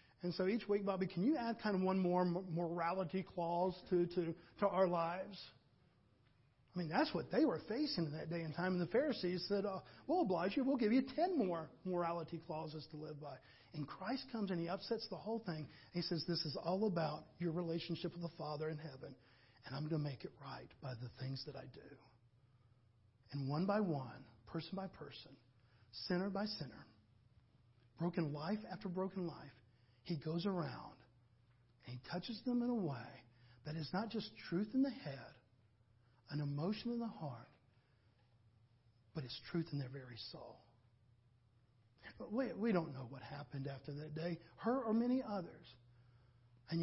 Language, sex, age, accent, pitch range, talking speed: English, male, 40-59, American, 120-185 Hz, 180 wpm